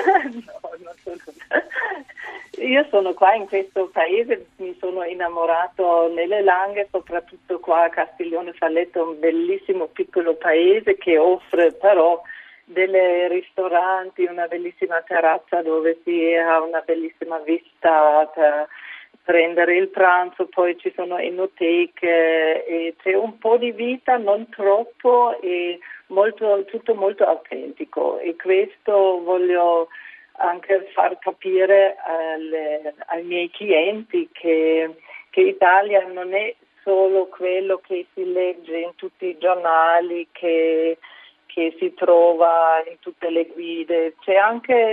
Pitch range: 170-215 Hz